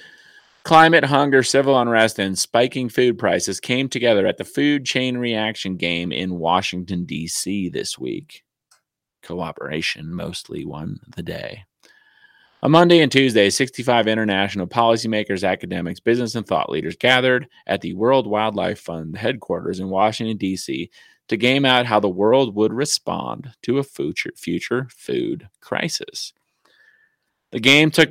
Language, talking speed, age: English, 140 wpm, 30-49